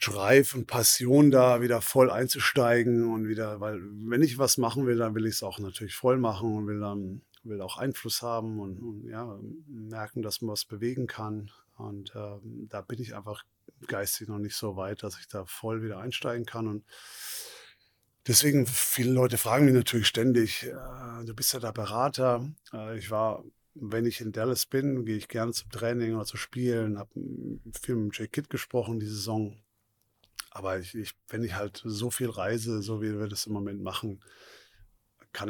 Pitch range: 100-120 Hz